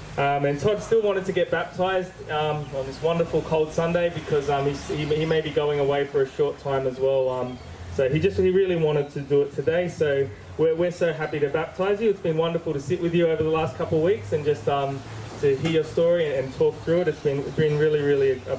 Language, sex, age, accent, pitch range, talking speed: English, male, 20-39, Australian, 145-180 Hz, 255 wpm